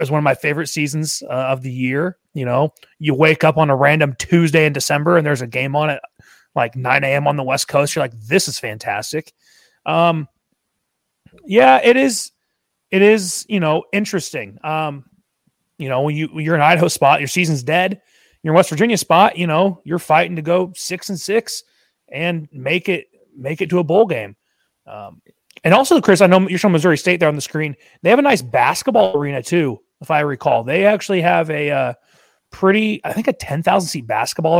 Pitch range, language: 140-185 Hz, English